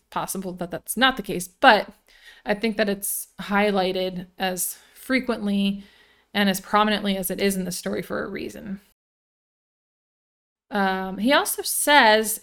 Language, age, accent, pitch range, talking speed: English, 20-39, American, 190-220 Hz, 145 wpm